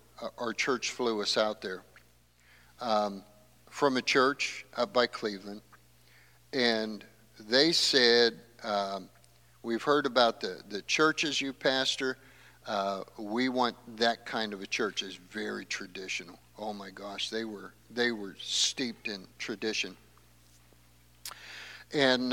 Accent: American